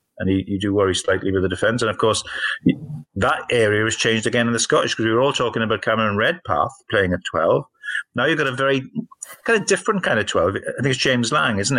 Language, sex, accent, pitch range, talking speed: English, male, British, 100-130 Hz, 245 wpm